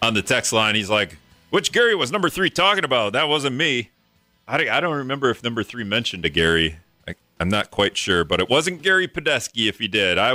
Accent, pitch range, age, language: American, 70-105 Hz, 40-59, English